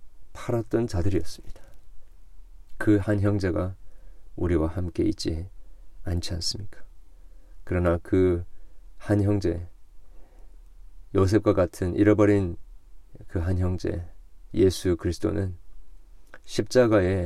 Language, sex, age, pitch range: Korean, male, 40-59, 85-100 Hz